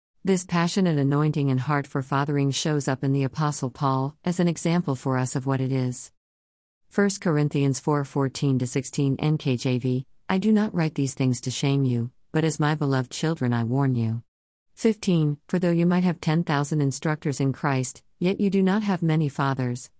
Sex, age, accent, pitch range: female, 50-69, American, 130-160 Hz